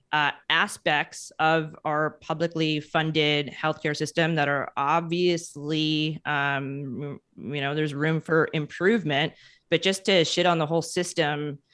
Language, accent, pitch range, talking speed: English, American, 150-165 Hz, 135 wpm